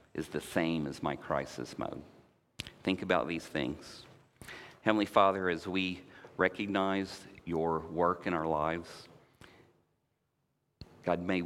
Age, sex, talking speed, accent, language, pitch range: 40-59, male, 120 wpm, American, English, 80-95 Hz